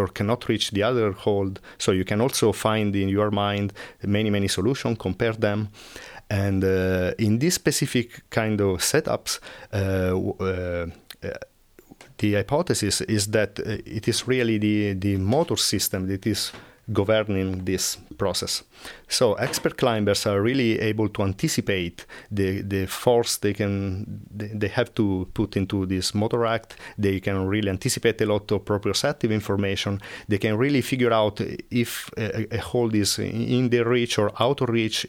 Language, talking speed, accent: English, 160 wpm, Italian